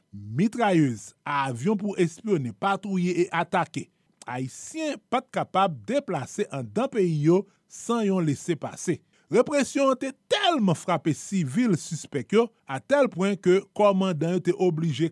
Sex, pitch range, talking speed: male, 150-210 Hz, 130 wpm